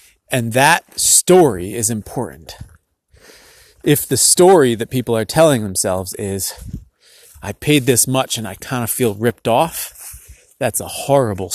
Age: 30-49